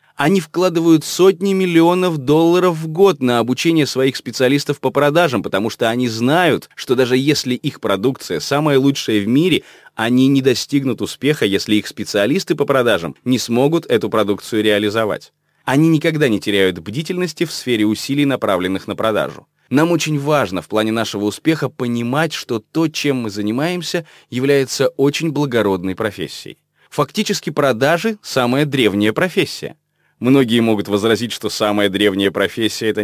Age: 20-39